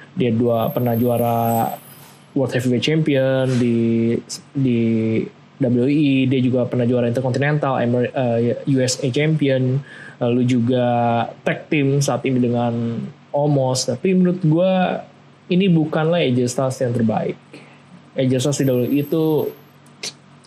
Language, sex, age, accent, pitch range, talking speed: Indonesian, male, 20-39, native, 125-145 Hz, 105 wpm